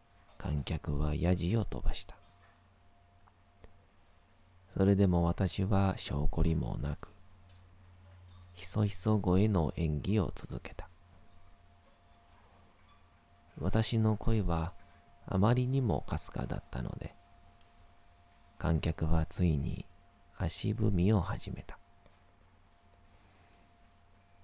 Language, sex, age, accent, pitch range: Japanese, male, 40-59, native, 85-100 Hz